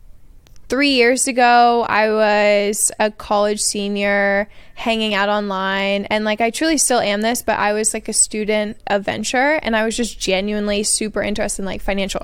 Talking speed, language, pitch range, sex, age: 175 wpm, English, 205-245 Hz, female, 20-39